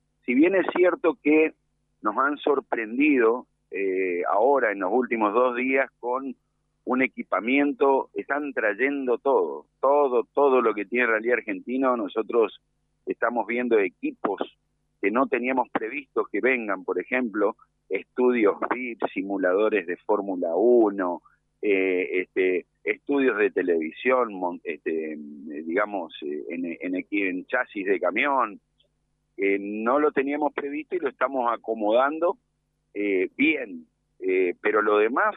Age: 50-69